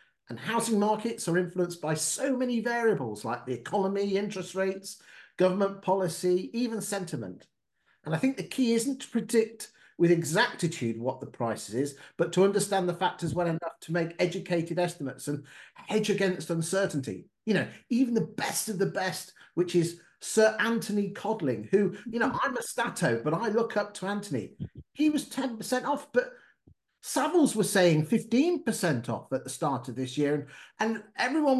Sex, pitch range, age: male, 165-230 Hz, 40-59